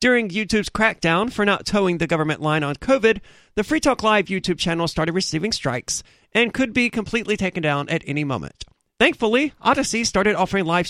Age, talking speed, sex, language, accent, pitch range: 40-59, 185 wpm, male, English, American, 160-225 Hz